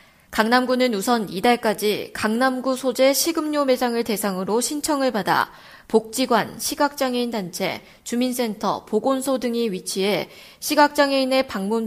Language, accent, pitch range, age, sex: Korean, native, 205-260 Hz, 20-39, female